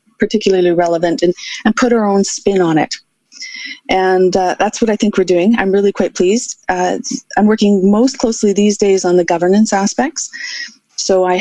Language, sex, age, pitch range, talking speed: English, female, 30-49, 180-220 Hz, 185 wpm